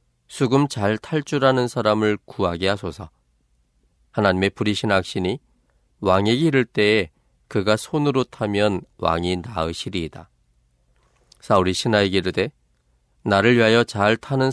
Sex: male